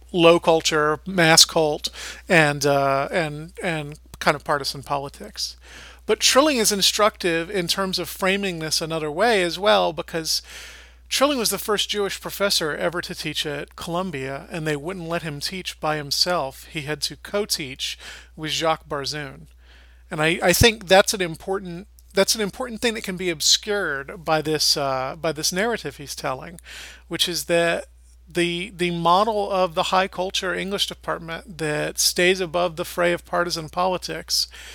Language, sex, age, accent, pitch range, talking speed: English, male, 40-59, American, 150-185 Hz, 165 wpm